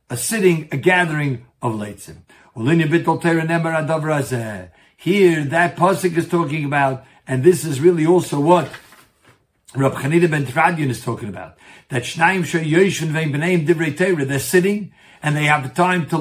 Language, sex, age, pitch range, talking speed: English, male, 60-79, 140-175 Hz, 135 wpm